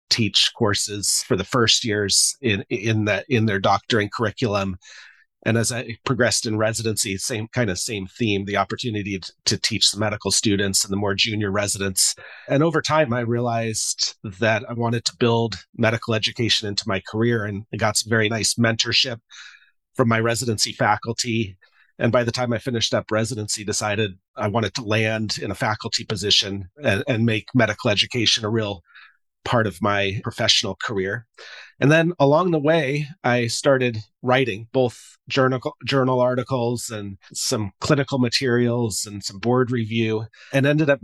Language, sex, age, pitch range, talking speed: English, male, 40-59, 105-125 Hz, 165 wpm